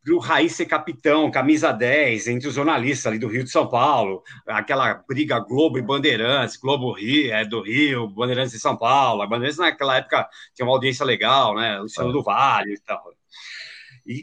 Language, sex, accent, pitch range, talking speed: Portuguese, male, Brazilian, 115-165 Hz, 200 wpm